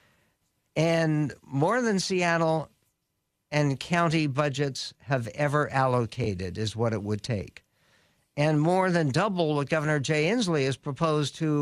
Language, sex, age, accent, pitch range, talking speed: English, male, 60-79, American, 135-165 Hz, 135 wpm